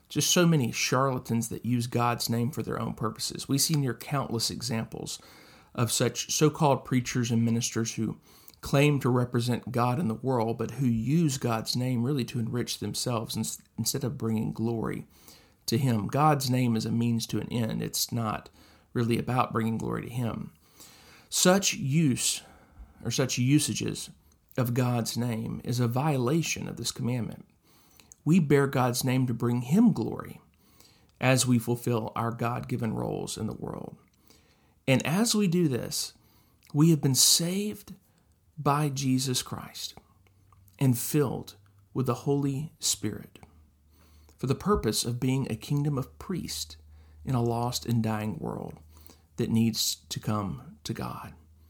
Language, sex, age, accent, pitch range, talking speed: English, male, 40-59, American, 110-135 Hz, 155 wpm